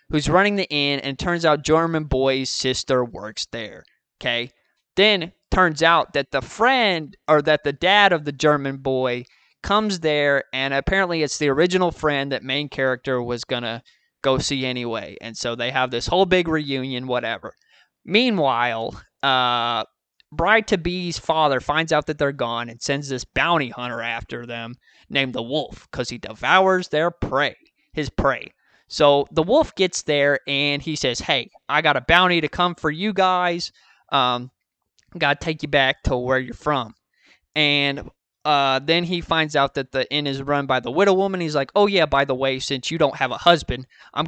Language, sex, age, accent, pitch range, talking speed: English, male, 20-39, American, 130-170 Hz, 185 wpm